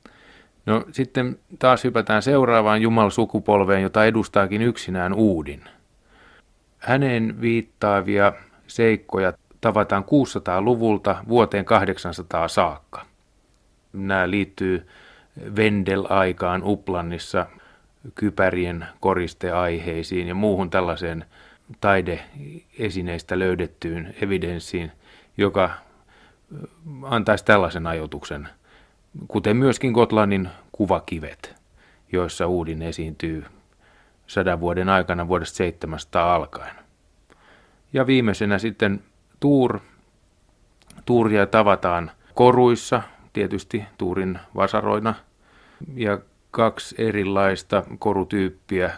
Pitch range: 90-110 Hz